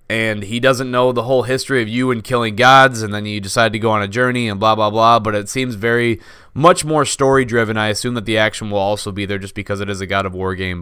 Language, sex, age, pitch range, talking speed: English, male, 20-39, 100-120 Hz, 275 wpm